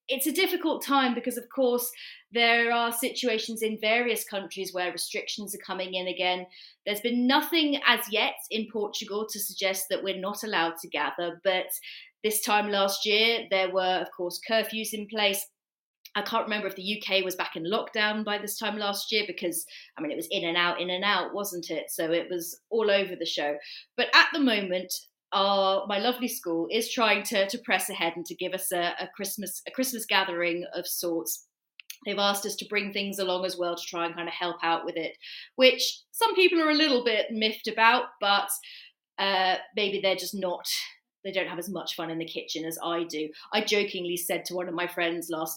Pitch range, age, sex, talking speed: 175-220 Hz, 30-49, female, 210 wpm